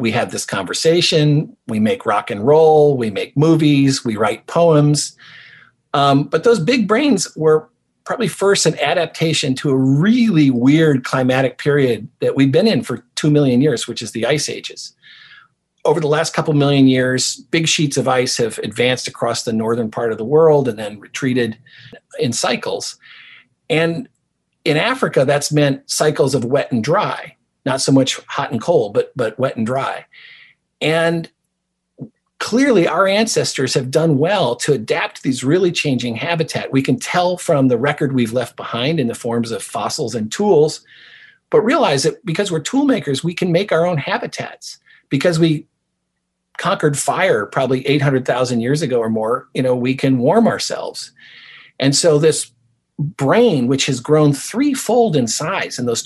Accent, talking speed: American, 170 wpm